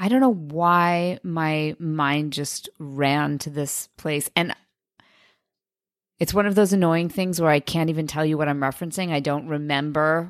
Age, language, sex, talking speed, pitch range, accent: 30-49, English, female, 175 wpm, 155-190 Hz, American